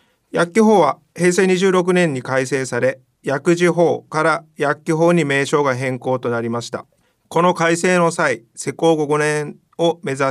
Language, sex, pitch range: Japanese, male, 135-165 Hz